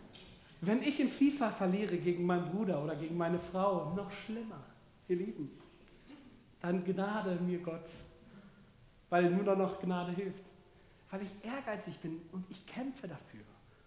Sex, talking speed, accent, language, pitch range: male, 145 wpm, German, German, 165-215 Hz